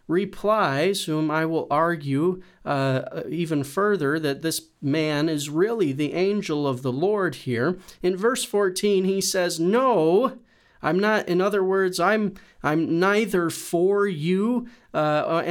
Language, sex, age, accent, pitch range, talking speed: English, male, 40-59, American, 160-200 Hz, 140 wpm